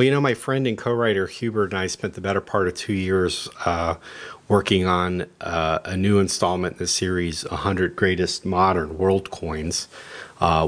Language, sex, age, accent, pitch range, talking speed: English, male, 40-59, American, 90-105 Hz, 185 wpm